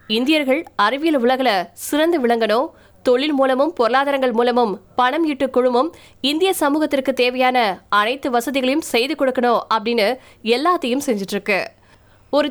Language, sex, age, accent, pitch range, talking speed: Tamil, female, 20-39, native, 235-285 Hz, 60 wpm